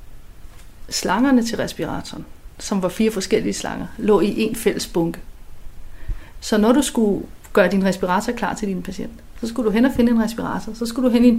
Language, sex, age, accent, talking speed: Danish, female, 30-49, native, 200 wpm